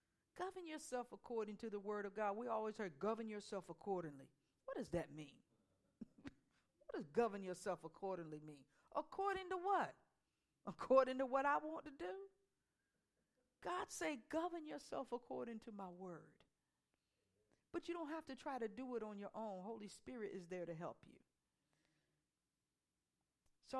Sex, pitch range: female, 195-260 Hz